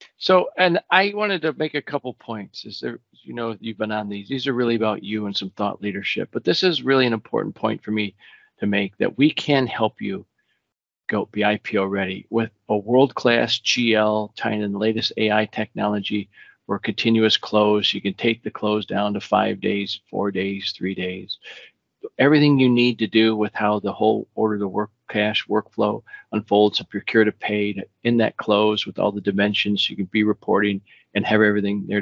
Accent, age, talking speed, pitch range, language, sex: American, 40-59, 195 wpm, 105-115 Hz, English, male